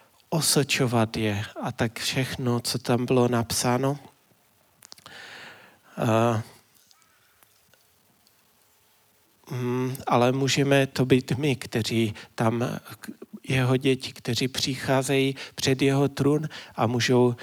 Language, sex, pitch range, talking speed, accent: Czech, male, 115-135 Hz, 85 wpm, native